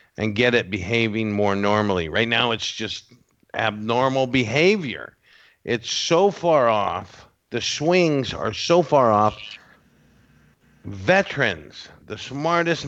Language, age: English, 50-69